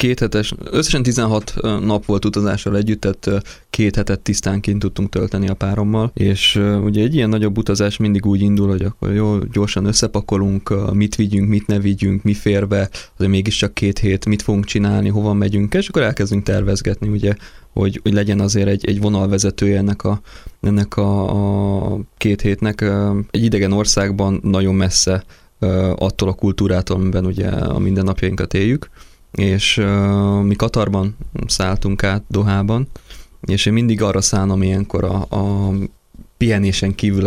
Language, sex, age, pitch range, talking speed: Hungarian, male, 20-39, 95-105 Hz, 155 wpm